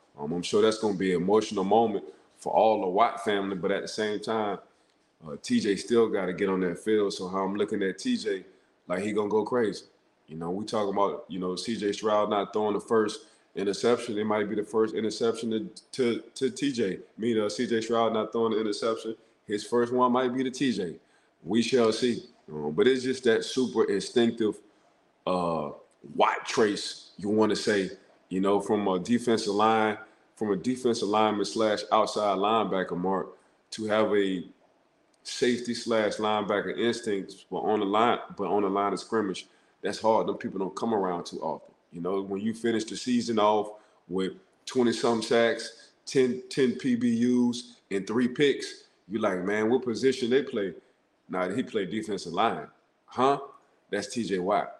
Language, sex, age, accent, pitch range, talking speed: English, male, 20-39, American, 100-120 Hz, 190 wpm